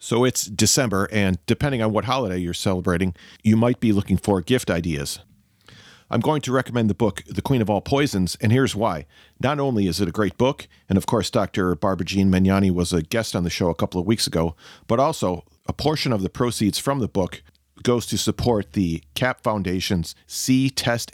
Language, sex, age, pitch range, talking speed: English, male, 40-59, 95-120 Hz, 210 wpm